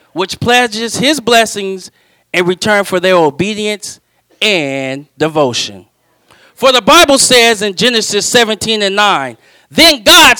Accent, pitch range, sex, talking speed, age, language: American, 175-240 Hz, male, 125 wpm, 40-59, English